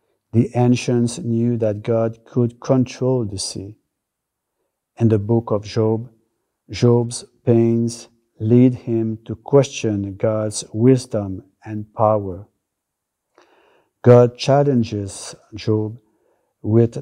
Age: 50-69